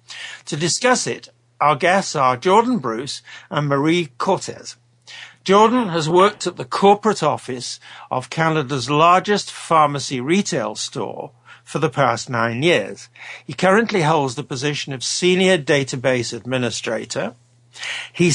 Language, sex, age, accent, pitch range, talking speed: English, male, 60-79, British, 125-175 Hz, 130 wpm